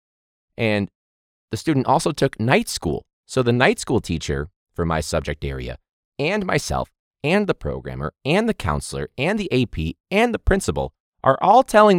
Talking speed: 165 wpm